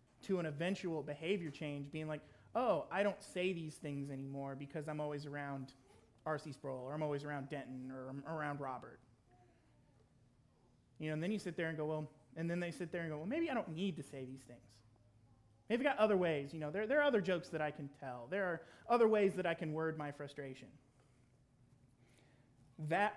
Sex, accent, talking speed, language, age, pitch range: male, American, 215 wpm, English, 30-49, 125-165 Hz